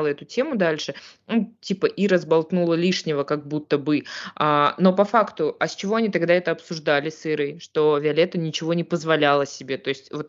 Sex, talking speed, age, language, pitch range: female, 195 wpm, 20-39, Russian, 150-175 Hz